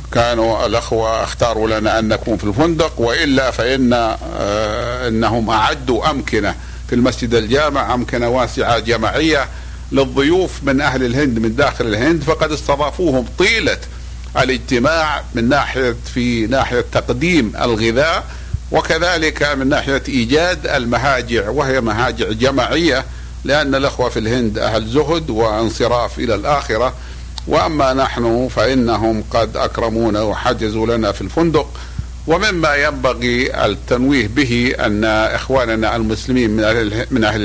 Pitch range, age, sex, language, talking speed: 110-135 Hz, 60-79, male, Arabic, 115 wpm